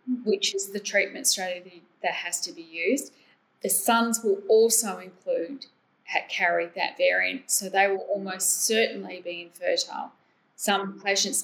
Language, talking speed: English, 140 wpm